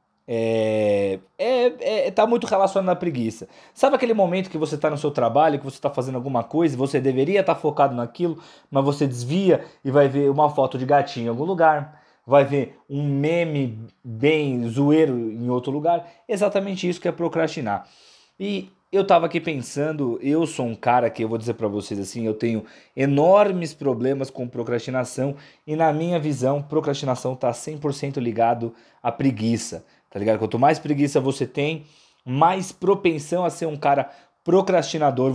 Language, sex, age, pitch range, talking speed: Portuguese, male, 20-39, 130-165 Hz, 175 wpm